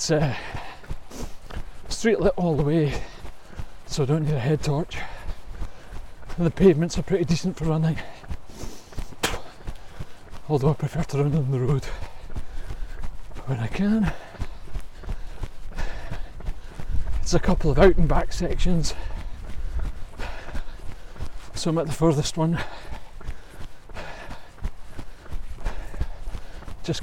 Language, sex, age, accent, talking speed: English, male, 40-59, British, 105 wpm